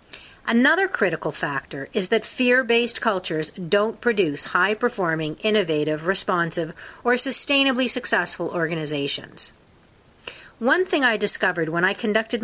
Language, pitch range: English, 175-235 Hz